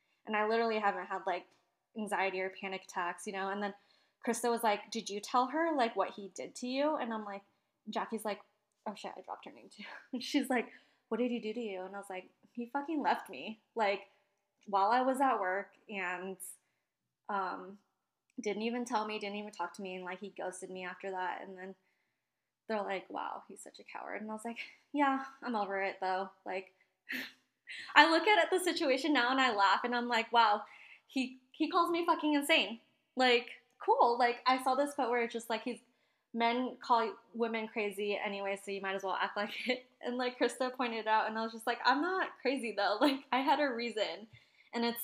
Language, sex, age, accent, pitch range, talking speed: English, female, 20-39, American, 195-250 Hz, 220 wpm